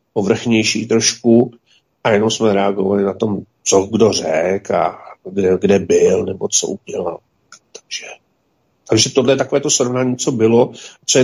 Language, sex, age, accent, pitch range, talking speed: Czech, male, 50-69, native, 115-130 Hz, 155 wpm